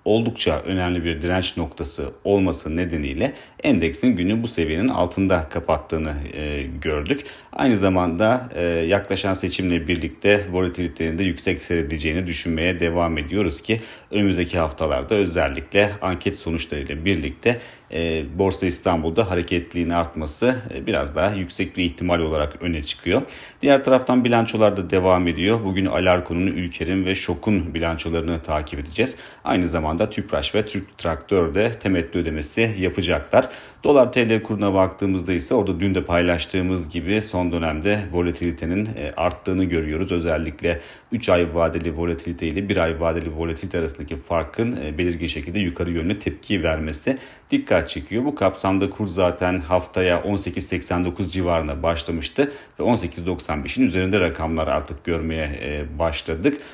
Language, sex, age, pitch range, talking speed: Turkish, male, 40-59, 80-100 Hz, 125 wpm